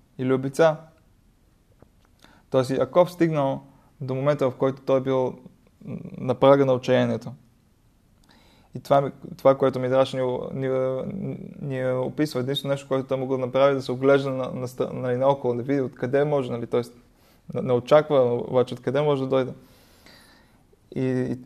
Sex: male